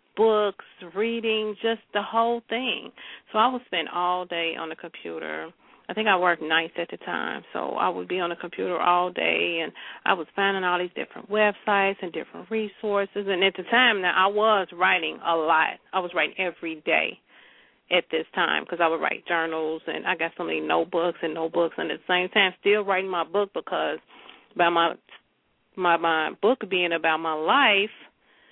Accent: American